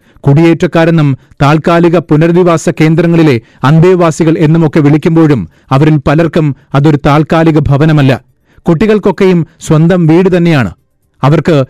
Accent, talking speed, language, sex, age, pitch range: native, 85 wpm, Malayalam, male, 40-59, 140-165 Hz